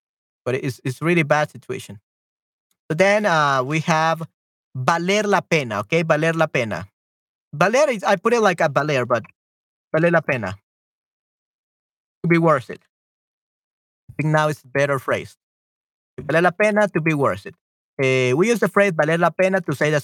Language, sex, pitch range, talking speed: Spanish, male, 135-180 Hz, 175 wpm